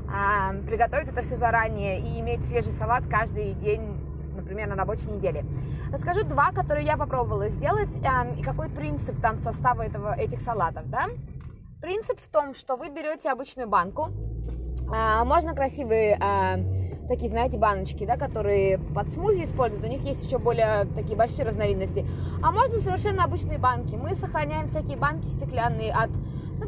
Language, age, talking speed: Russian, 20-39, 145 wpm